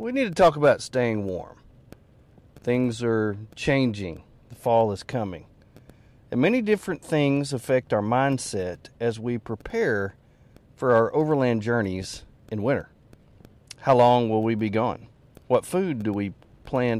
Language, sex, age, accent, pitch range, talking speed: English, male, 40-59, American, 110-140 Hz, 145 wpm